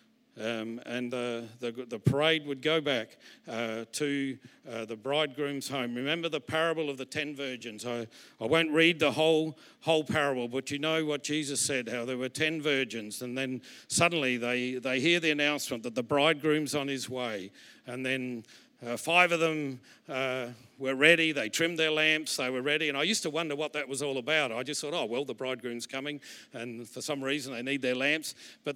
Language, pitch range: English, 130-160 Hz